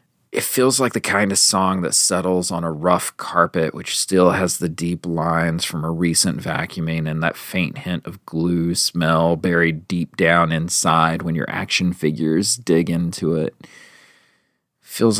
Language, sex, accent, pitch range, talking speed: English, male, American, 85-105 Hz, 165 wpm